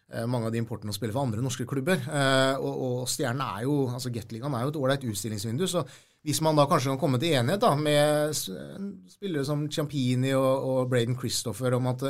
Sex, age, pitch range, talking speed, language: male, 30-49, 115-135 Hz, 205 wpm, English